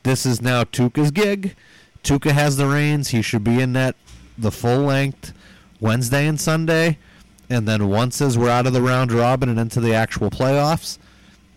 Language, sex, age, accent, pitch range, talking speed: English, male, 30-49, American, 110-140 Hz, 180 wpm